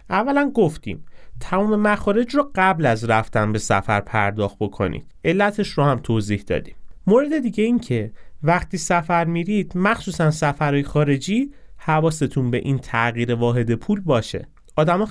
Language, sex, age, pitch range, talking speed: Persian, male, 30-49, 115-170 Hz, 140 wpm